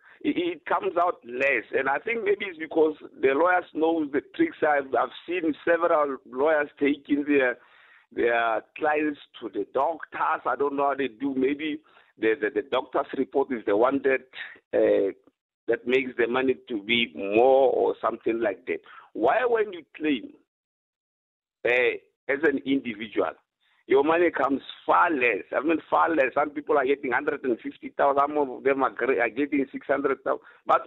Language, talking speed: English, 165 wpm